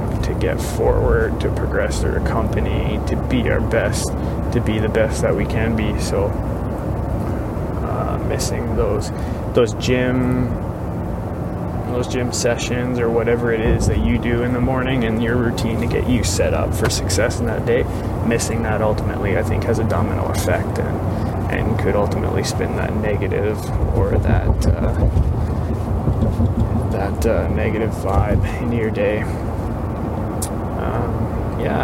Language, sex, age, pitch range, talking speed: English, male, 20-39, 105-115 Hz, 145 wpm